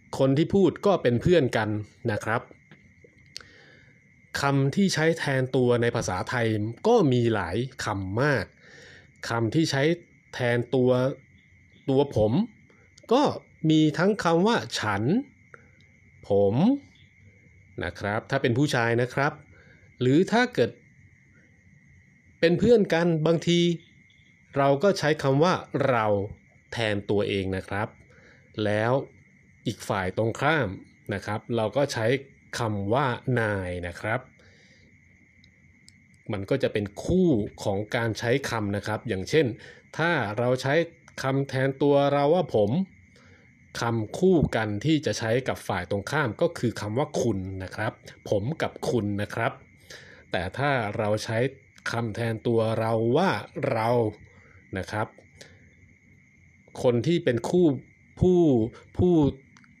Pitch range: 105-150 Hz